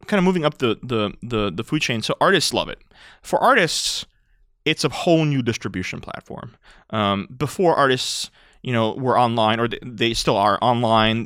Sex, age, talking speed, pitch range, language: male, 20-39, 185 wpm, 105-135 Hz, English